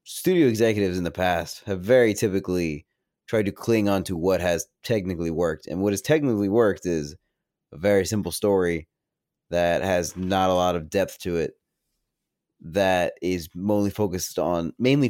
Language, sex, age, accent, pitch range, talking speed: English, male, 20-39, American, 90-105 Hz, 155 wpm